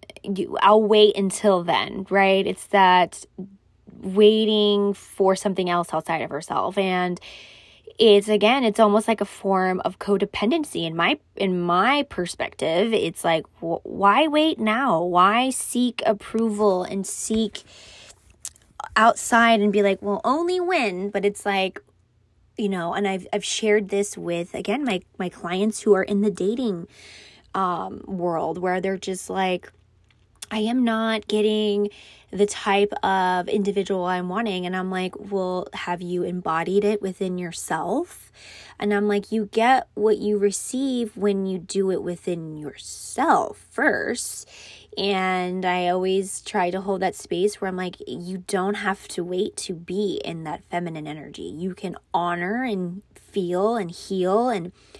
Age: 20-39